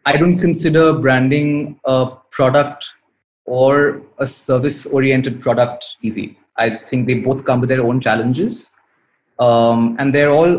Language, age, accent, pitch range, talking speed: English, 20-39, Indian, 130-155 Hz, 140 wpm